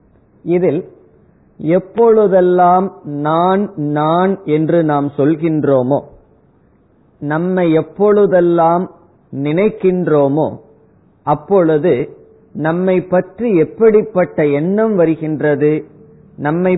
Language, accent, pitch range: Tamil, native, 145-185 Hz